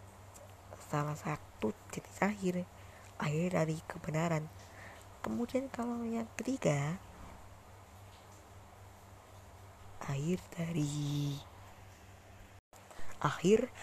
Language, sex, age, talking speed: Indonesian, female, 20-39, 60 wpm